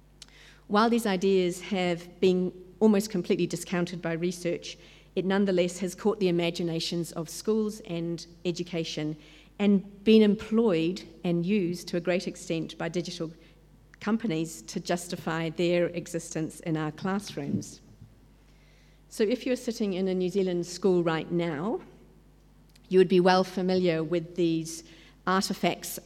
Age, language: 50-69, English